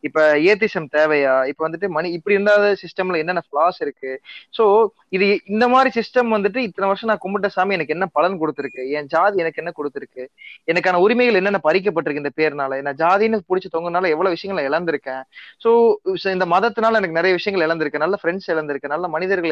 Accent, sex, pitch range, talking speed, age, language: native, male, 165-220 Hz, 175 wpm, 20-39, Tamil